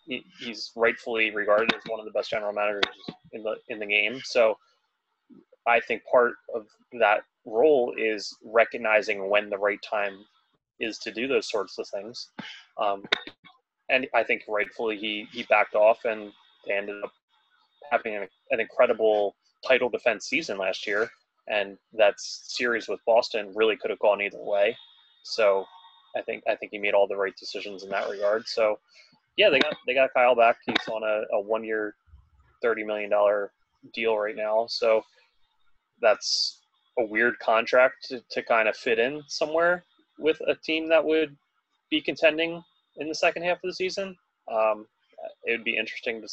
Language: English